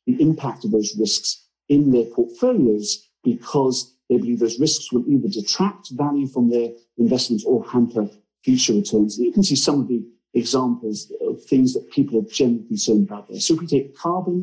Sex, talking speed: male, 185 wpm